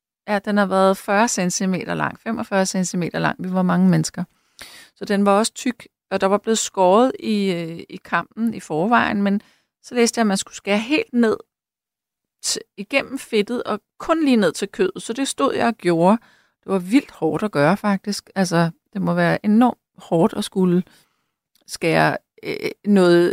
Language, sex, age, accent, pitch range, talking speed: Danish, female, 30-49, native, 195-240 Hz, 185 wpm